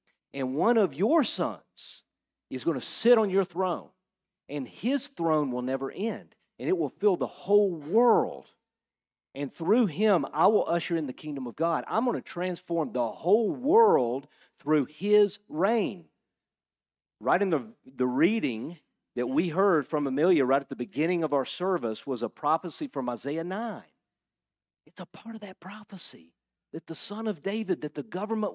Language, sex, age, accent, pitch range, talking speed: English, male, 50-69, American, 145-215 Hz, 175 wpm